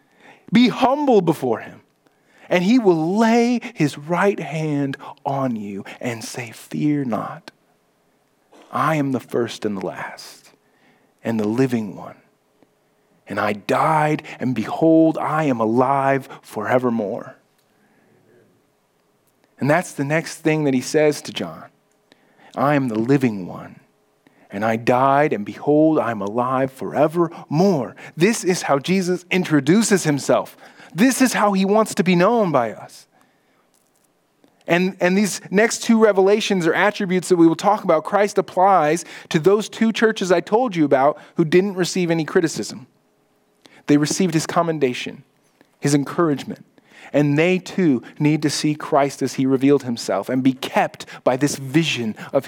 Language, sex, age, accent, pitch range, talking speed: English, male, 40-59, American, 135-185 Hz, 145 wpm